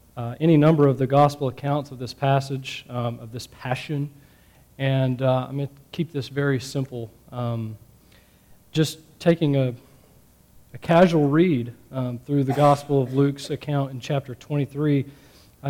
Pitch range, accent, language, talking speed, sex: 120-150 Hz, American, English, 155 wpm, male